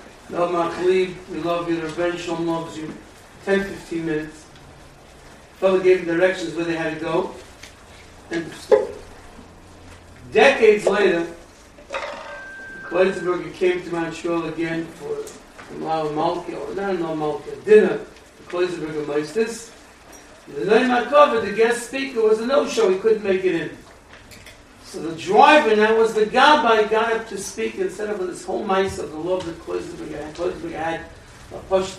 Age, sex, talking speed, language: 60-79, male, 140 wpm, English